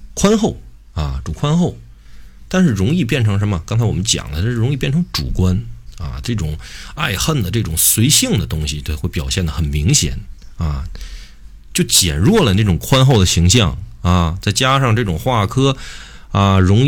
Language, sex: Chinese, male